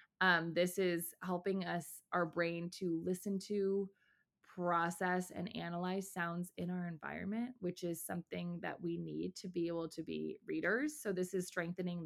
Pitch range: 170-200 Hz